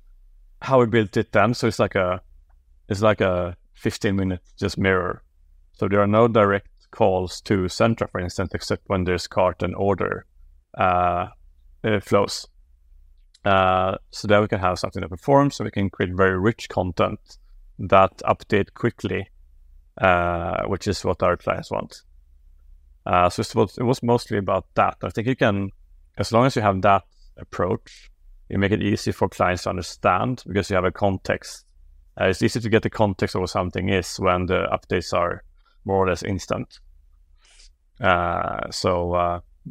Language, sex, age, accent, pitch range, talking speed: English, male, 30-49, Norwegian, 85-105 Hz, 175 wpm